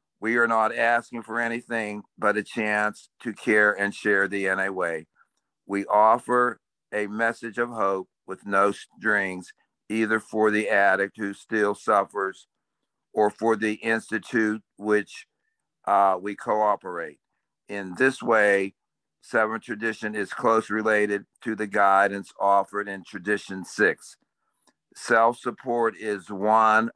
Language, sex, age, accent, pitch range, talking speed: English, male, 50-69, American, 100-115 Hz, 130 wpm